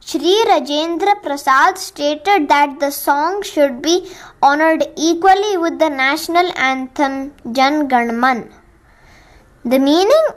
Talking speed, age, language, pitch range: 115 wpm, 20-39, Hindi, 270-345 Hz